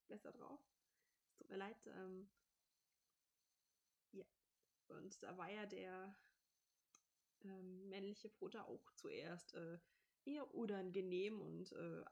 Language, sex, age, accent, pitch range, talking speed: German, female, 20-39, German, 185-220 Hz, 105 wpm